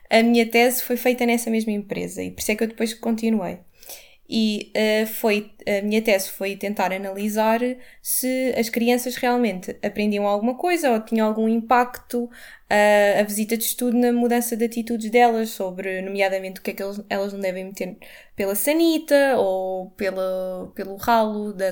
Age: 20-39